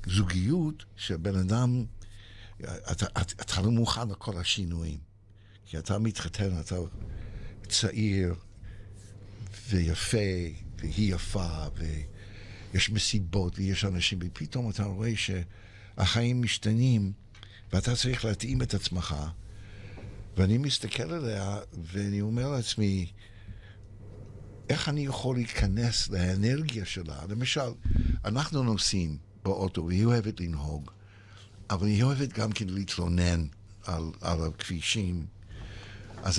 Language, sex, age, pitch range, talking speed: Hebrew, male, 60-79, 95-110 Hz, 100 wpm